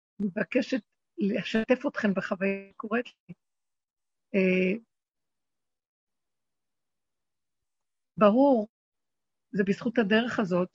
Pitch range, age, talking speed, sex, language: 195-245 Hz, 60-79, 65 wpm, female, Hebrew